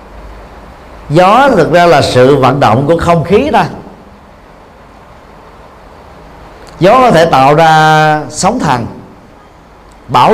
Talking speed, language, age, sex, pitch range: 110 wpm, Vietnamese, 50-69, male, 130-190 Hz